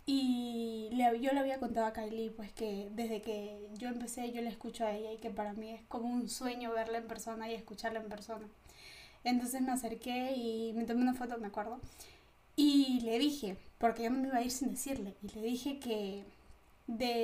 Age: 10-29